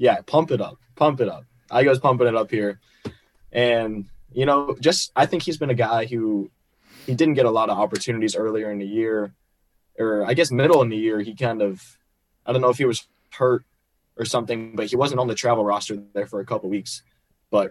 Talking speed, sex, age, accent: 230 wpm, male, 20-39, American